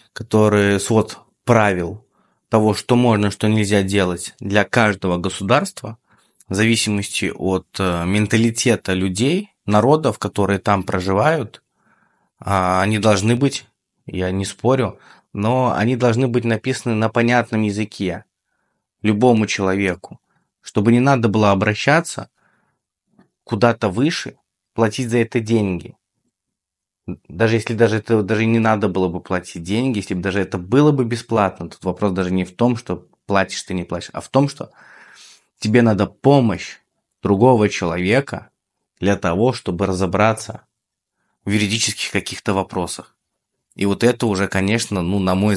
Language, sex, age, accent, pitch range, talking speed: Russian, male, 20-39, native, 95-120 Hz, 135 wpm